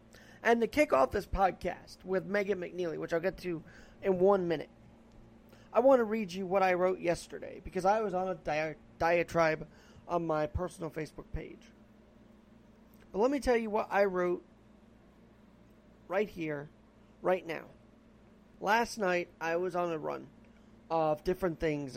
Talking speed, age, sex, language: 160 wpm, 30-49, male, English